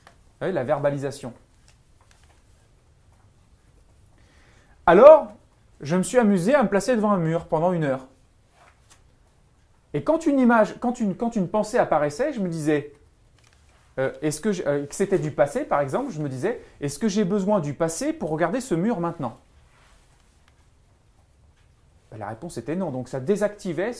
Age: 30-49